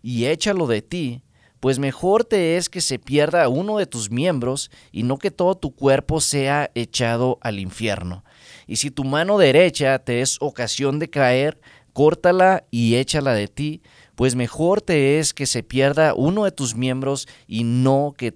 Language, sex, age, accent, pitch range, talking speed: English, male, 30-49, Mexican, 120-155 Hz, 175 wpm